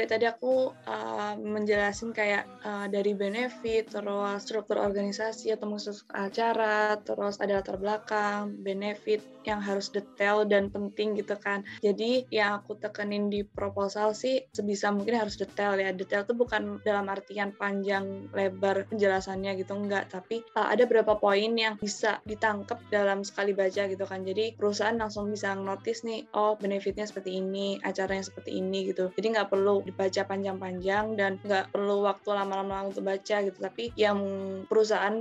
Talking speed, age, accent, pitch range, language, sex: 155 wpm, 20-39, native, 195-215 Hz, Indonesian, female